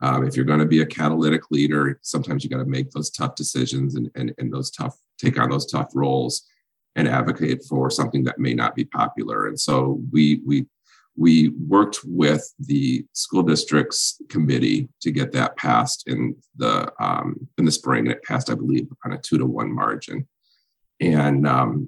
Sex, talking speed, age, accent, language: male, 190 wpm, 40-59, American, English